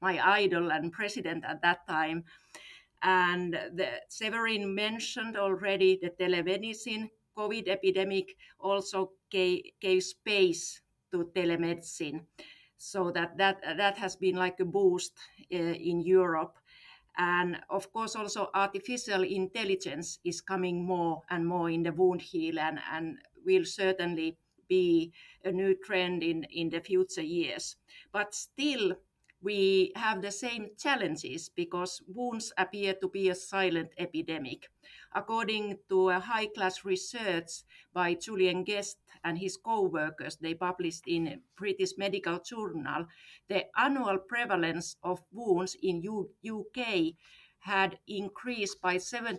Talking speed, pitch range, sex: 130 wpm, 175-210 Hz, female